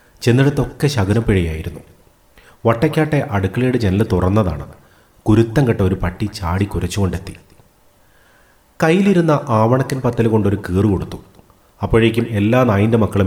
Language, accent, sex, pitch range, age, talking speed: Malayalam, native, male, 90-120 Hz, 30-49, 95 wpm